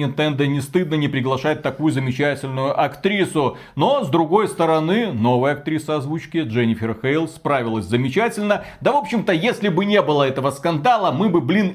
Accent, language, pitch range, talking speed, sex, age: native, Russian, 135-180 Hz, 160 wpm, male, 30-49